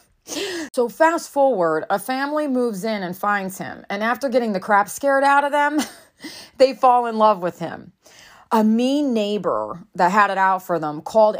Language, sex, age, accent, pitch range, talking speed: English, female, 30-49, American, 185-260 Hz, 185 wpm